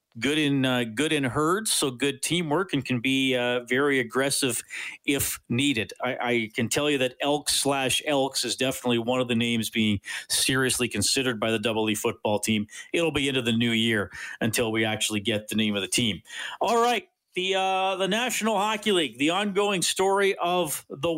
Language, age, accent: English, 40-59, American